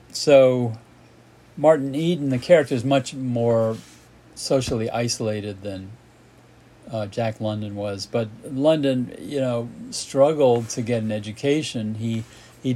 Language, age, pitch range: English, 40-59, 110-130 Hz